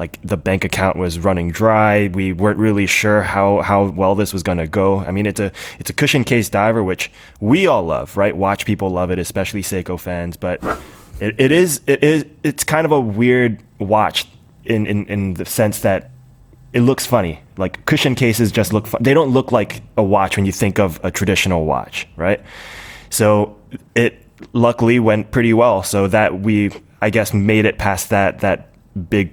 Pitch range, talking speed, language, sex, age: 95-110 Hz, 200 wpm, English, male, 20-39